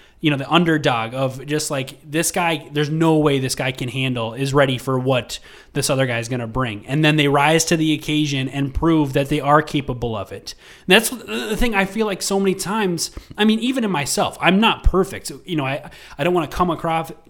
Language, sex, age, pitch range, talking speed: English, male, 20-39, 135-170 Hz, 235 wpm